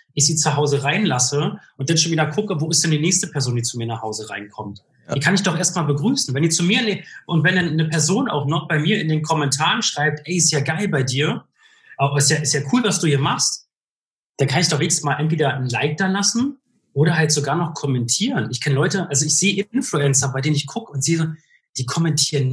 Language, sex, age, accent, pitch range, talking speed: German, male, 30-49, German, 135-170 Hz, 245 wpm